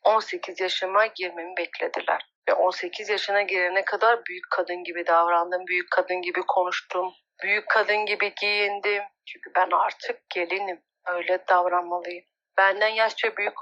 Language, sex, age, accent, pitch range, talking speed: Turkish, female, 40-59, native, 175-210 Hz, 130 wpm